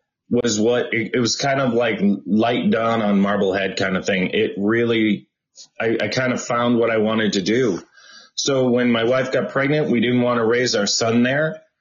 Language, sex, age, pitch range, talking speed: English, male, 30-49, 115-135 Hz, 205 wpm